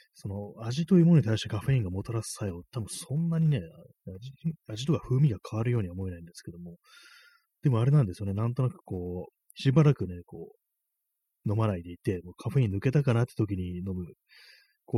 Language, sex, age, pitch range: Japanese, male, 30-49, 95-125 Hz